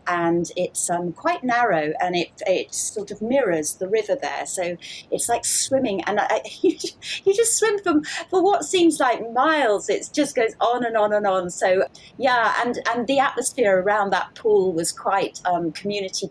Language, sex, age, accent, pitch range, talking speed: English, female, 30-49, British, 175-225 Hz, 185 wpm